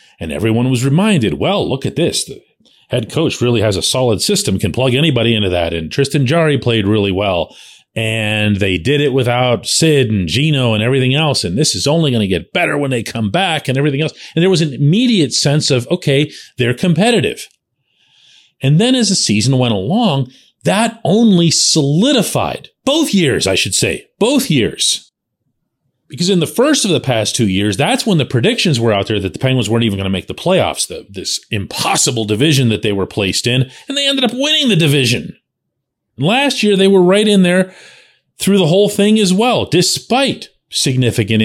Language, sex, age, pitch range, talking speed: English, male, 40-59, 120-195 Hz, 195 wpm